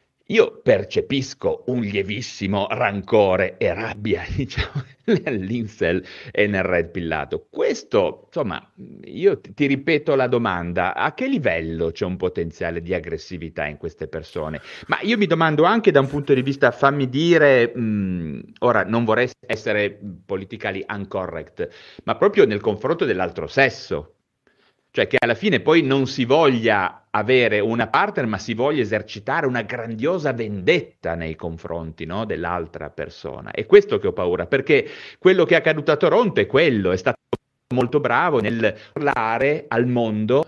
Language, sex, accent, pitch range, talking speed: Italian, male, native, 100-160 Hz, 150 wpm